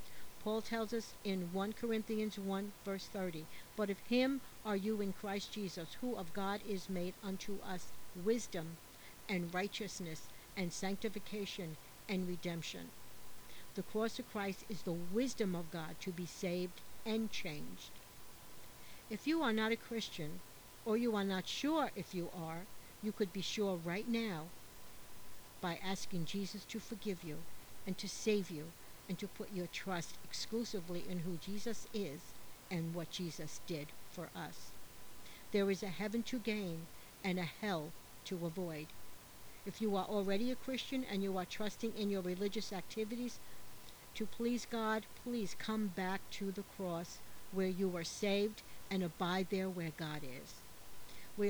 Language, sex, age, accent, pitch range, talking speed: English, female, 60-79, American, 180-215 Hz, 160 wpm